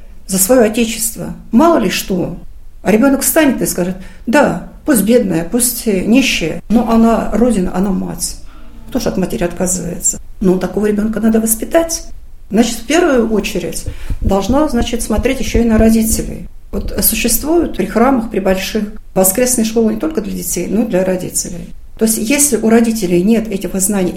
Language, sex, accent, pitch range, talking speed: Russian, female, native, 185-235 Hz, 165 wpm